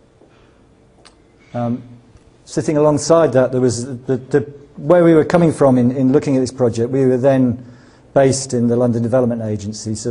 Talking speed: 180 wpm